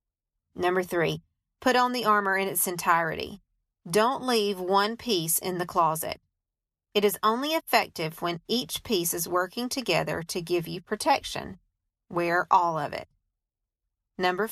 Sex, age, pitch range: female, 40-59, 170-215 Hz